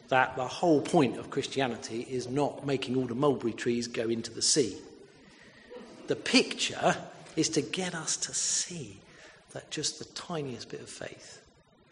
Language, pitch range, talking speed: English, 130-185 Hz, 160 wpm